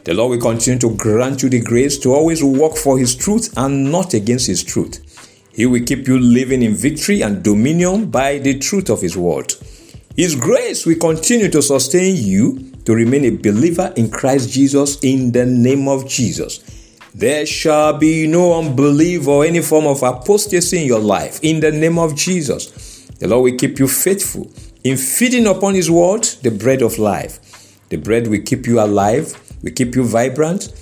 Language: English